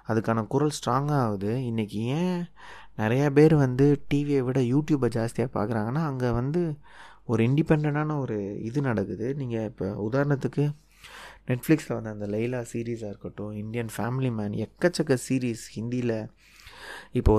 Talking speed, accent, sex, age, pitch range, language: 125 wpm, native, male, 30-49, 110-145 Hz, Tamil